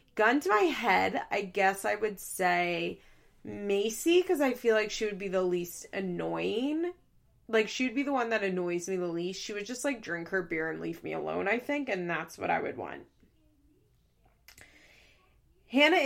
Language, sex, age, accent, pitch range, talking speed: English, female, 20-39, American, 190-255 Hz, 190 wpm